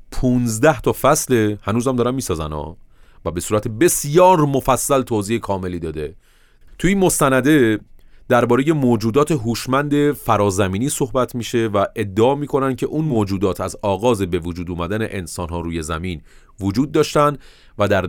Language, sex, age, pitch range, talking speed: Persian, male, 30-49, 90-130 Hz, 140 wpm